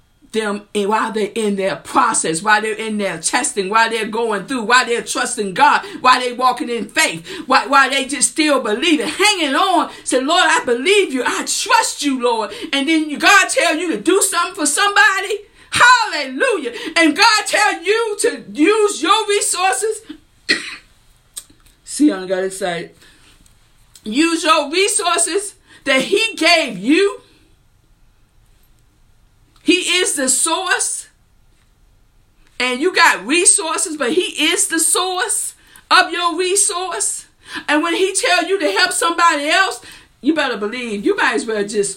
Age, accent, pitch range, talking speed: 50-69, American, 220-350 Hz, 155 wpm